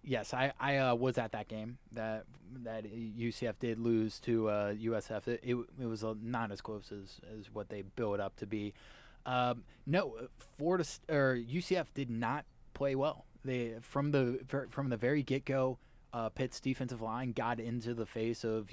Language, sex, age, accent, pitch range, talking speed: English, male, 20-39, American, 115-135 Hz, 185 wpm